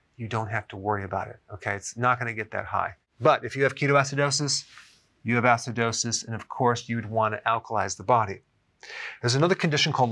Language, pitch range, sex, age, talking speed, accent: English, 110-135 Hz, male, 40-59, 220 wpm, American